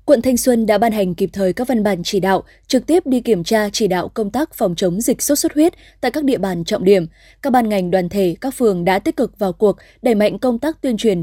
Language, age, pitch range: Vietnamese, 20-39, 195-260 Hz